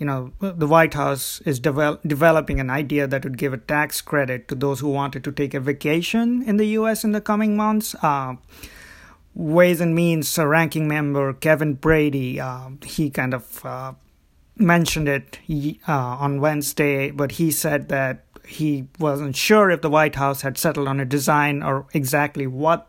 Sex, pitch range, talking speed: male, 135-165 Hz, 180 wpm